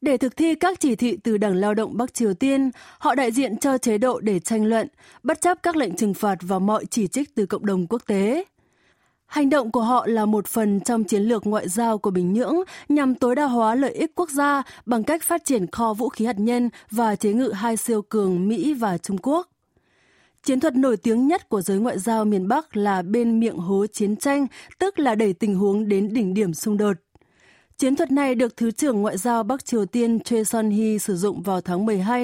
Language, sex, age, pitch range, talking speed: Vietnamese, female, 20-39, 205-270 Hz, 230 wpm